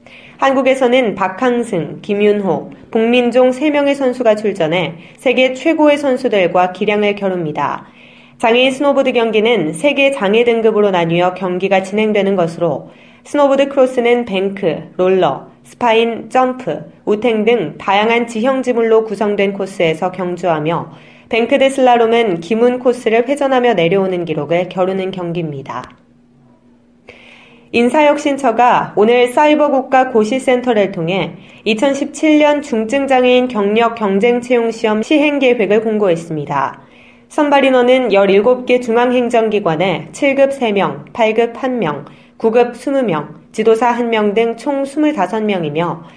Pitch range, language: 190-255 Hz, Korean